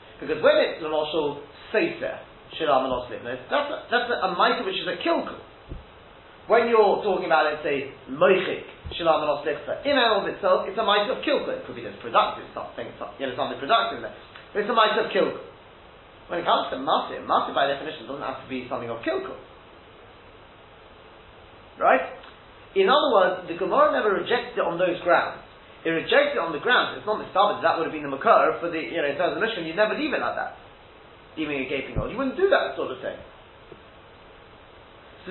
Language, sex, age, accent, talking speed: English, male, 30-49, British, 210 wpm